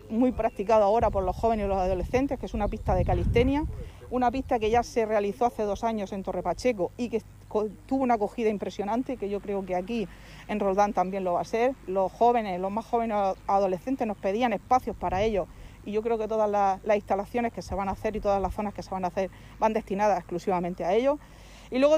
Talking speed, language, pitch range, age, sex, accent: 230 wpm, Spanish, 200-230 Hz, 40-59, female, Spanish